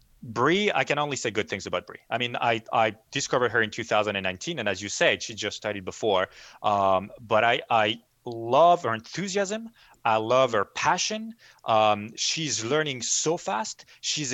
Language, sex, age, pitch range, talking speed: English, male, 30-49, 110-150 Hz, 175 wpm